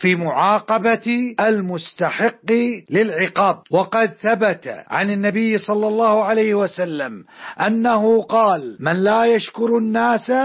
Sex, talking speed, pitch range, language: male, 105 wpm, 195-235 Hz, Arabic